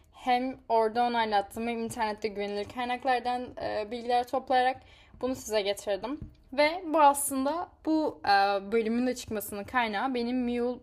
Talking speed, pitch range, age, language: 125 wpm, 215-280 Hz, 10-29, Turkish